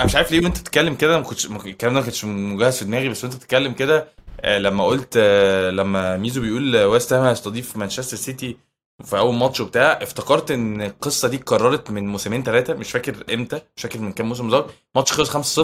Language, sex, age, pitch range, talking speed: Arabic, male, 20-39, 105-130 Hz, 195 wpm